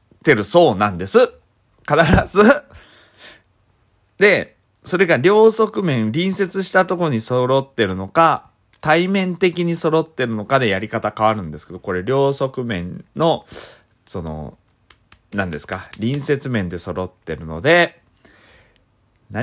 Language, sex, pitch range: Japanese, male, 95-150 Hz